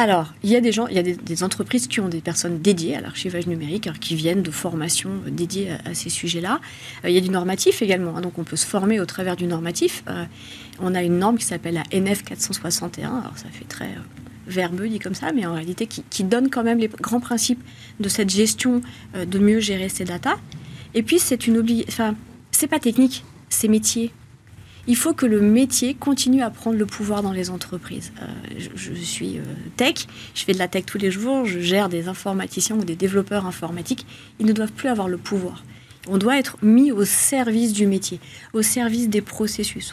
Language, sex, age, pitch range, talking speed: French, female, 40-59, 175-230 Hz, 220 wpm